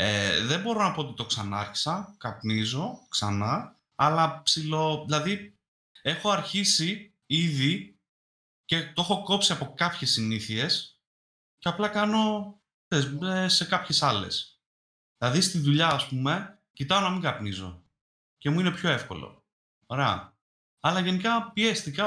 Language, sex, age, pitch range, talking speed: Greek, male, 30-49, 110-175 Hz, 130 wpm